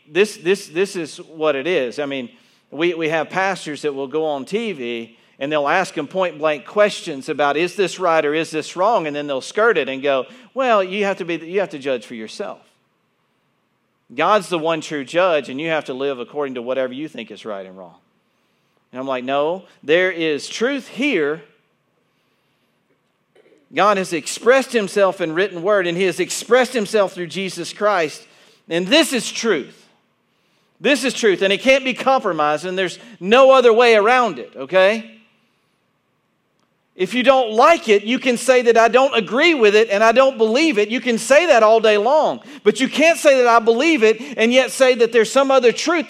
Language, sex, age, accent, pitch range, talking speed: English, male, 50-69, American, 170-260 Hz, 200 wpm